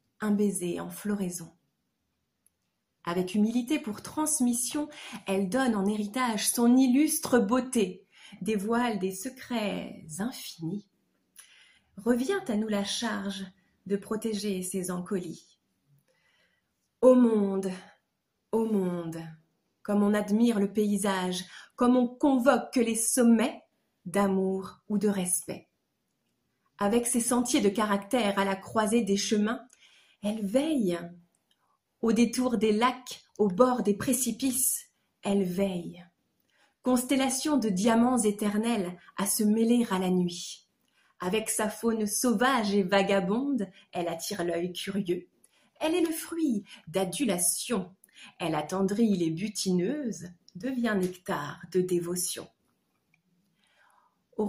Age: 30-49